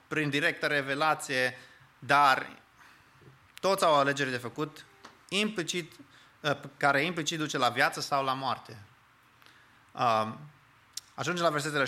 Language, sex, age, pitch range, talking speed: English, male, 30-49, 120-155 Hz, 110 wpm